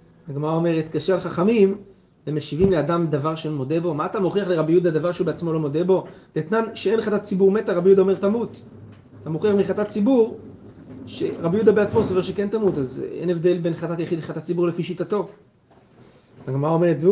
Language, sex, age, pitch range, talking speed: Hebrew, male, 30-49, 150-195 Hz, 165 wpm